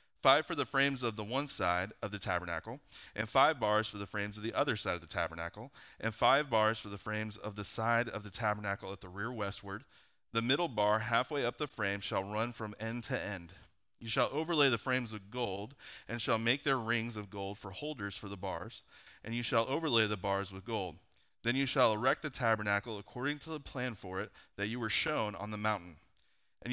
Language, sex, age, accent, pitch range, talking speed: English, male, 30-49, American, 105-130 Hz, 225 wpm